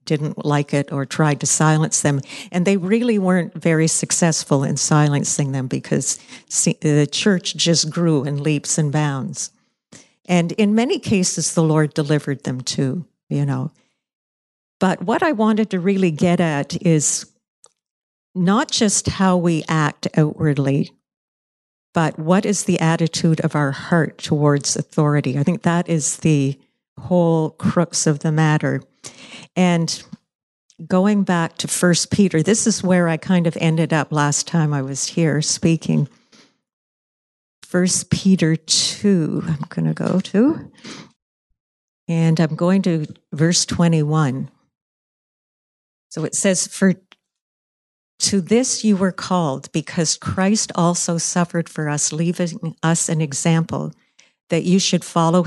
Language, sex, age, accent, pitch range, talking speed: English, female, 50-69, American, 150-185 Hz, 140 wpm